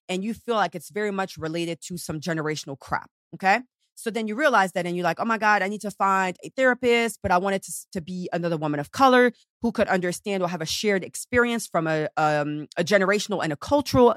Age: 30-49